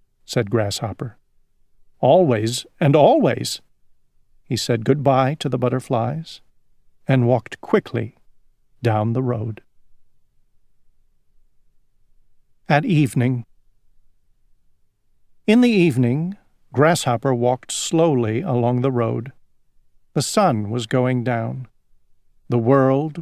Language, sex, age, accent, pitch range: Chinese, male, 50-69, American, 120-160 Hz